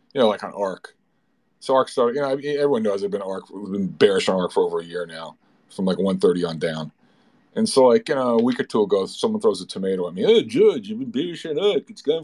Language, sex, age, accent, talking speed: English, male, 40-59, American, 275 wpm